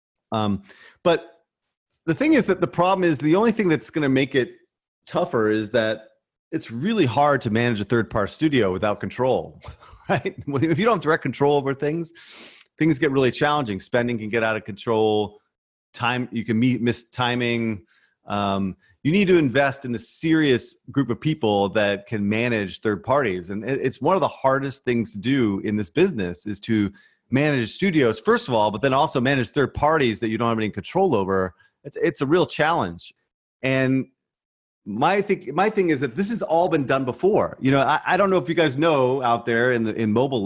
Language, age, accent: English, 30-49, American